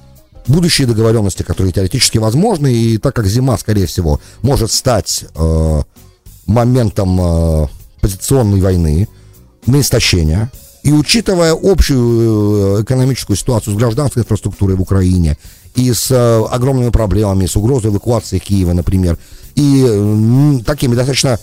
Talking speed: 120 wpm